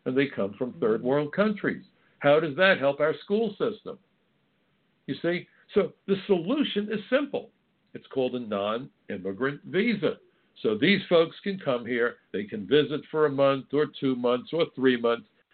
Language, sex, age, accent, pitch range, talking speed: English, male, 60-79, American, 135-195 Hz, 170 wpm